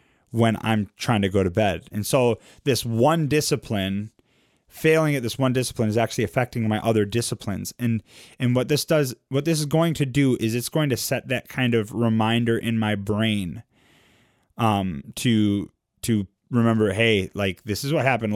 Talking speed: 185 wpm